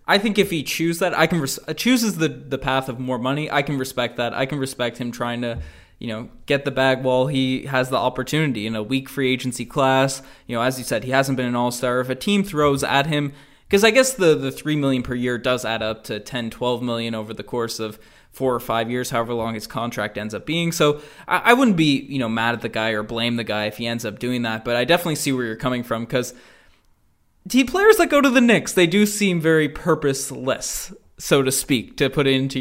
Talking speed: 255 wpm